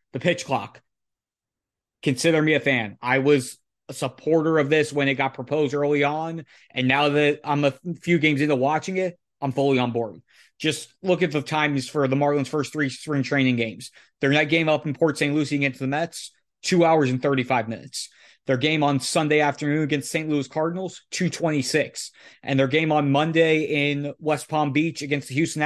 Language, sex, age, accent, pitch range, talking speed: English, male, 30-49, American, 140-165 Hz, 195 wpm